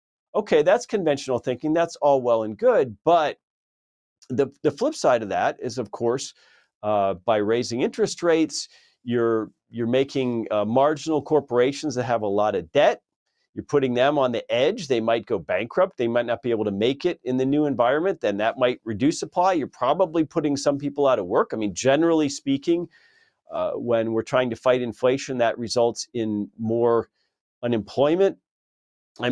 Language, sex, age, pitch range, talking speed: English, male, 40-59, 115-160 Hz, 180 wpm